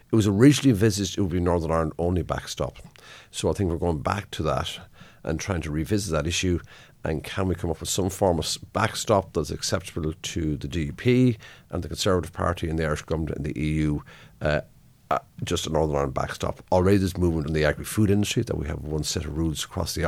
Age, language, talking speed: 50-69, English, 220 wpm